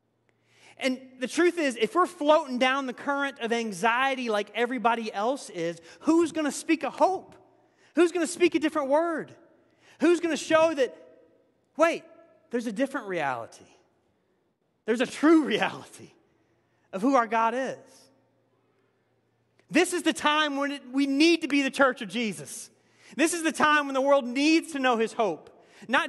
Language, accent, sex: English, American, male